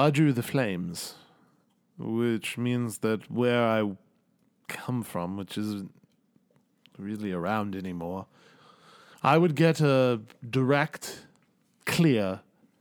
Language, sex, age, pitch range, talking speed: English, male, 40-59, 115-150 Hz, 105 wpm